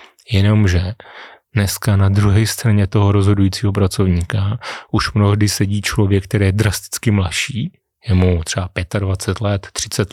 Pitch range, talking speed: 100-110 Hz, 130 wpm